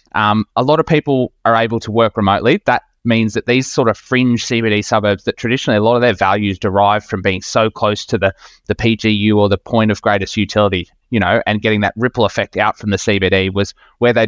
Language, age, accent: English, 20-39, Australian